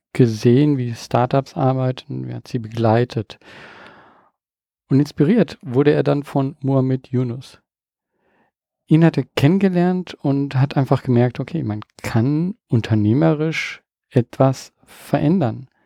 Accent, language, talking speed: German, German, 110 wpm